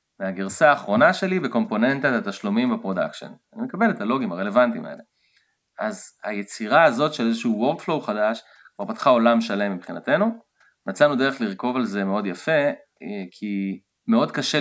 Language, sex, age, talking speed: English, male, 30-49, 125 wpm